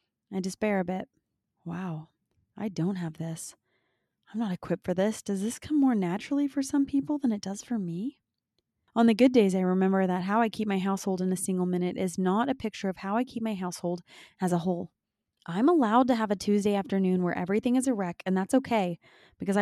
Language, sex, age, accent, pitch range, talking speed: English, female, 20-39, American, 185-230 Hz, 220 wpm